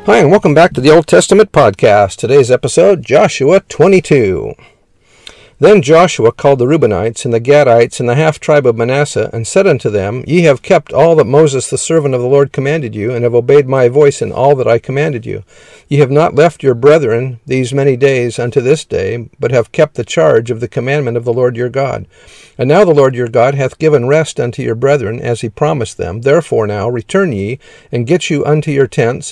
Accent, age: American, 50-69